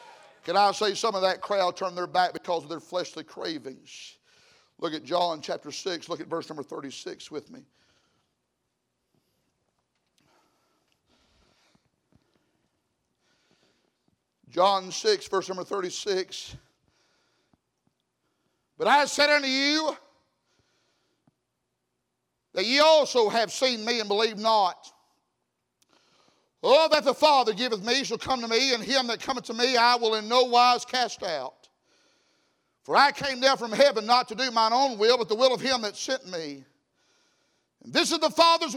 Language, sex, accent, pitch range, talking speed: English, male, American, 220-285 Hz, 145 wpm